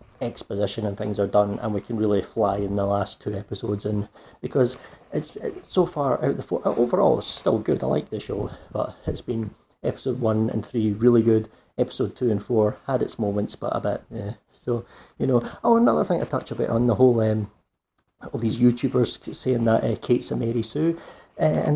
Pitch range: 105-130 Hz